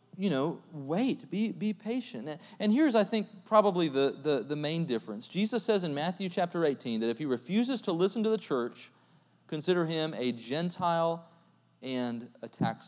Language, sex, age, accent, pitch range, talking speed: English, male, 40-59, American, 110-175 Hz, 175 wpm